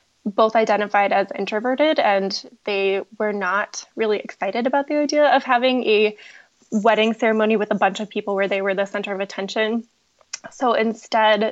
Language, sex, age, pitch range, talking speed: English, female, 20-39, 210-245 Hz, 165 wpm